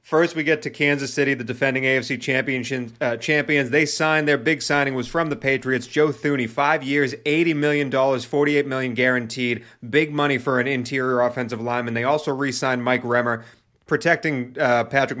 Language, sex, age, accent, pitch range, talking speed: English, male, 30-49, American, 125-150 Hz, 180 wpm